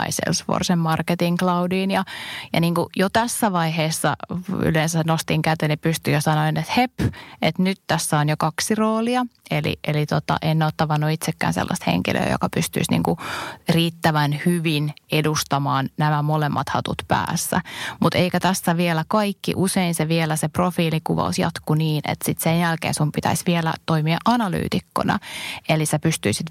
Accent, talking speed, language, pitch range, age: native, 155 wpm, Finnish, 150-175 Hz, 20-39